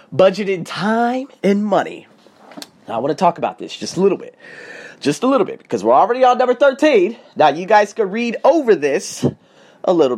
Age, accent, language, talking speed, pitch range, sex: 30-49, American, English, 200 wpm, 180-245 Hz, male